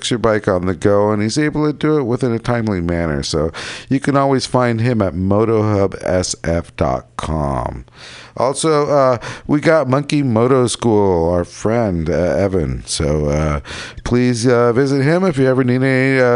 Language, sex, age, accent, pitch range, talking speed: English, male, 50-69, American, 100-140 Hz, 165 wpm